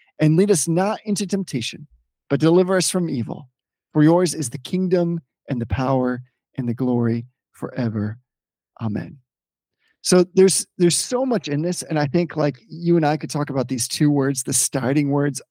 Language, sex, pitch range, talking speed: English, male, 135-180 Hz, 180 wpm